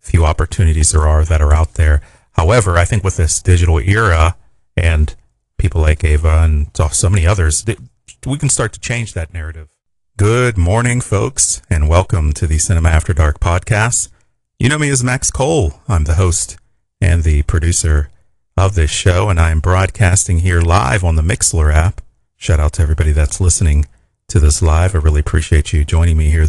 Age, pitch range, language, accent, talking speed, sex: 40-59, 80-95 Hz, English, American, 185 wpm, male